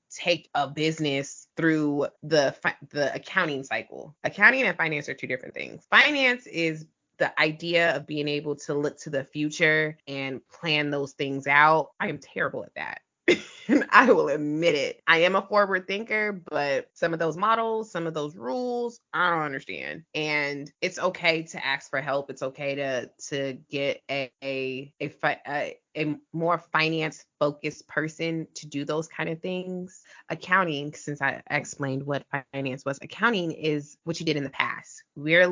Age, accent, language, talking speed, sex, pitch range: 20-39, American, English, 170 wpm, female, 140-170 Hz